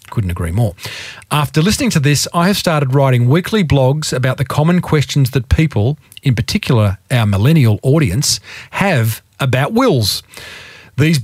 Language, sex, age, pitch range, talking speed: English, male, 40-59, 115-160 Hz, 150 wpm